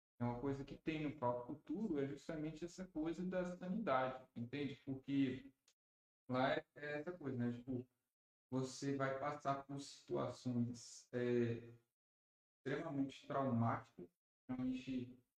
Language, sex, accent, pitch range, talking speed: Portuguese, male, Brazilian, 120-150 Hz, 115 wpm